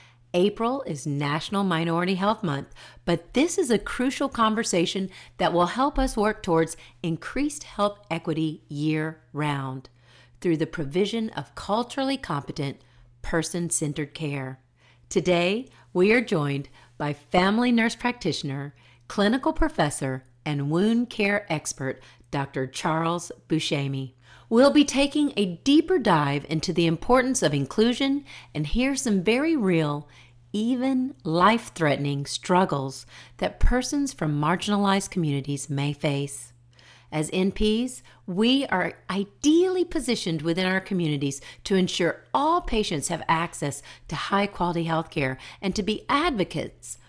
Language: English